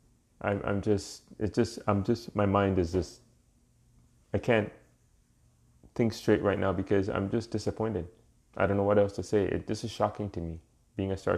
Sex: male